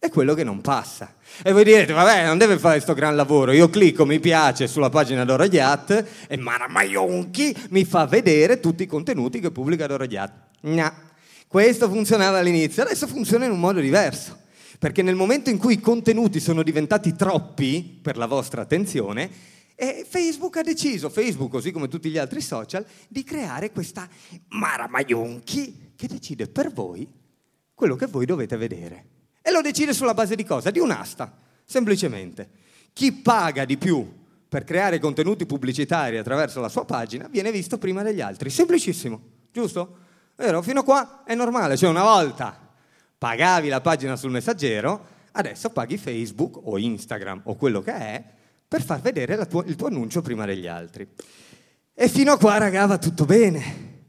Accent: native